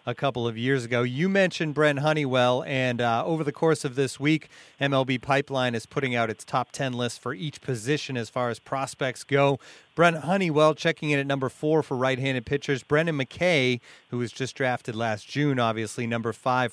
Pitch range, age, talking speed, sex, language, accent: 125-150 Hz, 30-49, 195 wpm, male, English, American